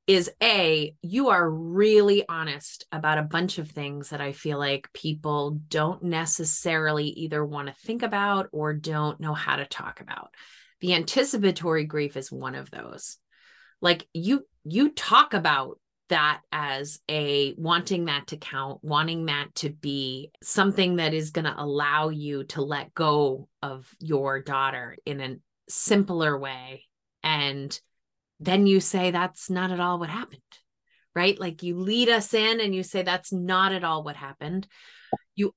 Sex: female